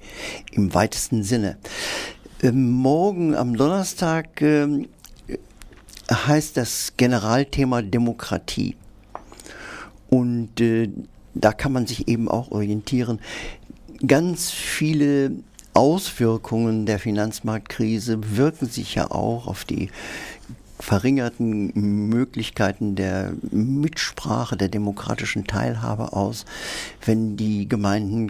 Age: 50-69